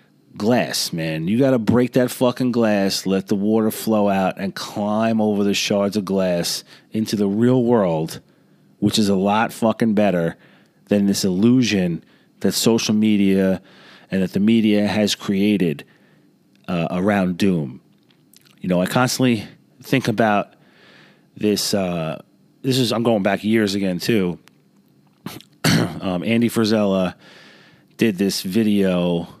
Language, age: English, 30-49